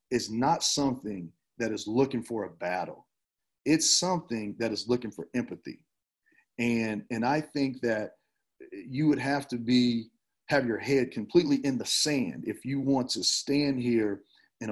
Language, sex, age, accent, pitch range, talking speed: English, male, 40-59, American, 115-155 Hz, 165 wpm